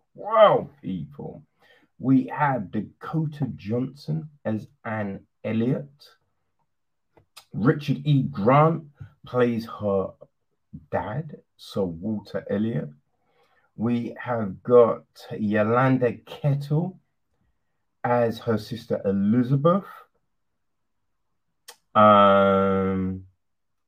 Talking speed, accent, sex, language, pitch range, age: 70 wpm, British, male, English, 105-140 Hz, 30-49